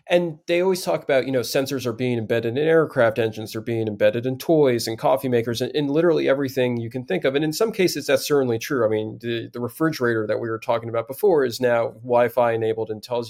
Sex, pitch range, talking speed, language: male, 120-155 Hz, 245 wpm, English